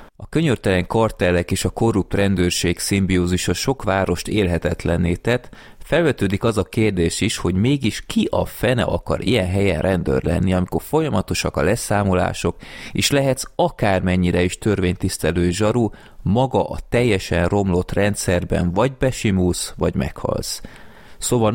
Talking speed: 130 wpm